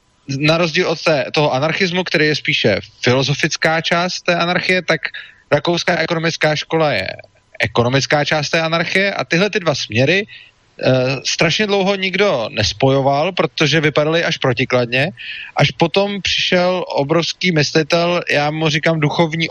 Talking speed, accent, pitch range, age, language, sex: 130 wpm, native, 140-170 Hz, 30-49, Czech, male